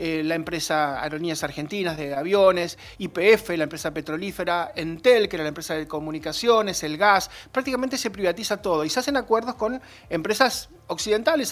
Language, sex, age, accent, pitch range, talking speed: Spanish, male, 30-49, Argentinian, 170-250 Hz, 155 wpm